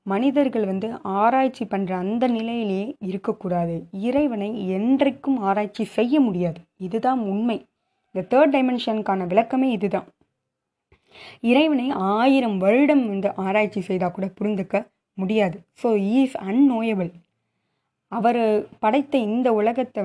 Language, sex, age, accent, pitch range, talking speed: Tamil, female, 20-39, native, 190-240 Hz, 110 wpm